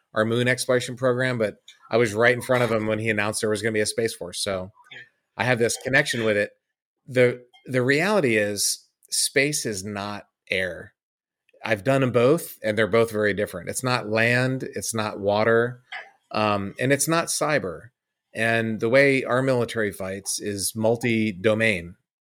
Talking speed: 175 wpm